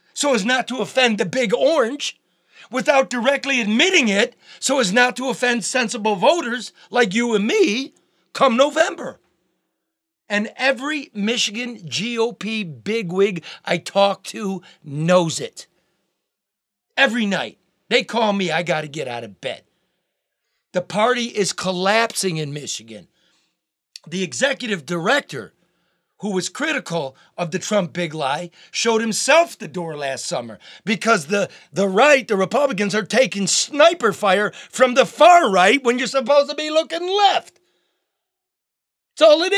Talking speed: 145 wpm